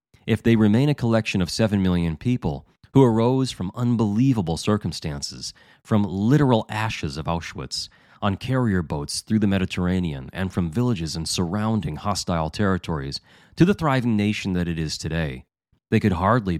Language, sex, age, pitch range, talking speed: English, male, 30-49, 85-110 Hz, 155 wpm